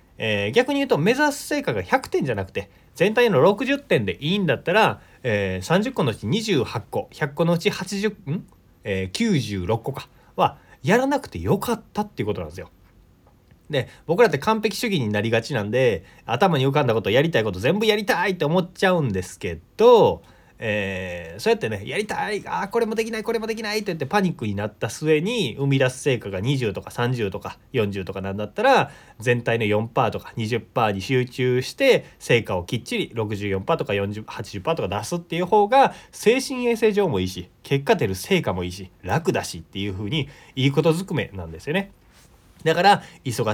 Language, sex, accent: Japanese, male, native